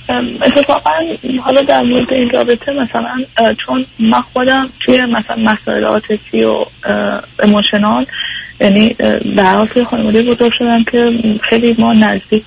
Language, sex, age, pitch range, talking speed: Persian, female, 20-39, 200-240 Hz, 120 wpm